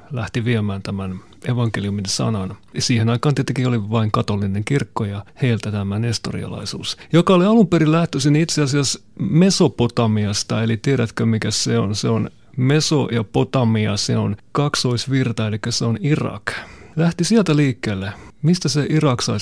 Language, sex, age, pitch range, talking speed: Finnish, male, 30-49, 110-145 Hz, 140 wpm